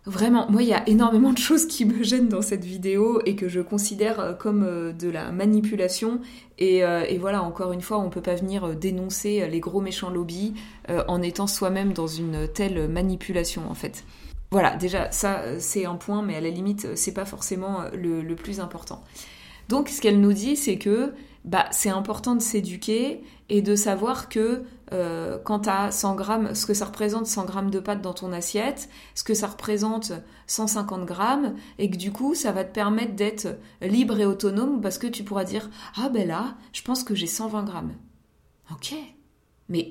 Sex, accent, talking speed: female, French, 195 wpm